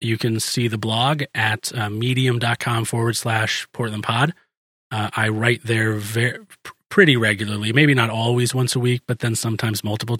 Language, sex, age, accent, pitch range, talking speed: English, male, 30-49, American, 105-125 Hz, 170 wpm